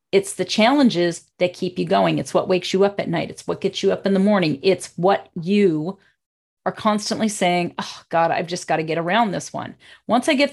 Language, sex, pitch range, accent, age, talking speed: English, female, 170-215 Hz, American, 40-59, 235 wpm